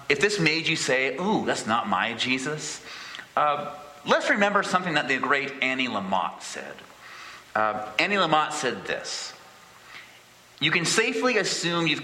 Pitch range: 120-160 Hz